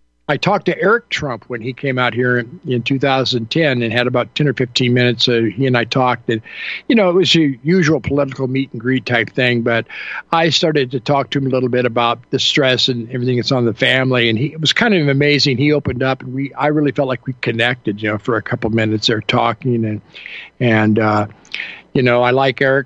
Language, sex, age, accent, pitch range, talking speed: English, male, 50-69, American, 120-145 Hz, 240 wpm